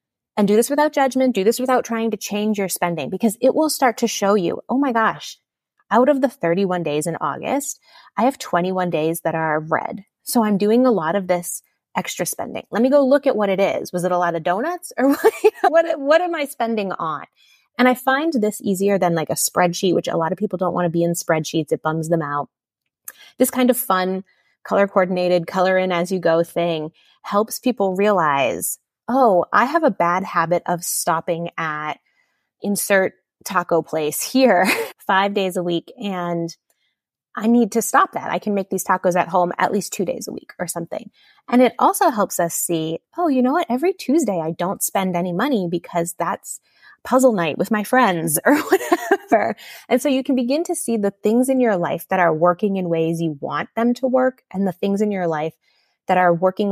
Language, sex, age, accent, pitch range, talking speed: English, female, 20-39, American, 175-255 Hz, 210 wpm